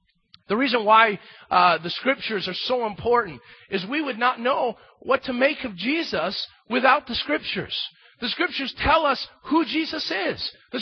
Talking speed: 165 wpm